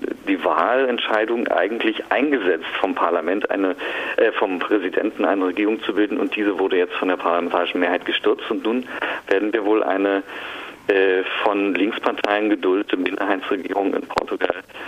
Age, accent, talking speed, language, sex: 40-59, German, 145 wpm, German, male